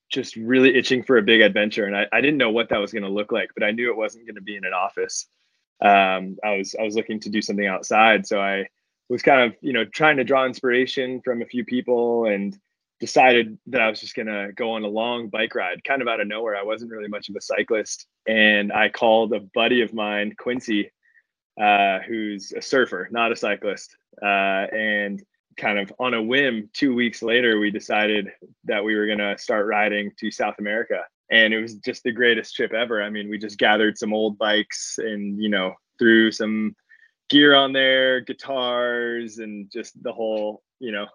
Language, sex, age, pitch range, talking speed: English, male, 20-39, 105-120 Hz, 215 wpm